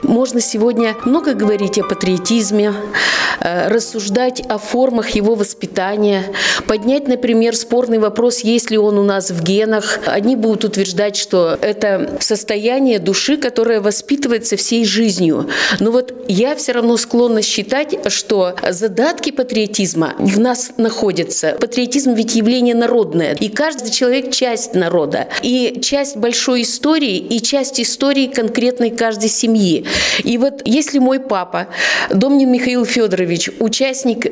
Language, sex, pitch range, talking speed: Russian, female, 210-255 Hz, 130 wpm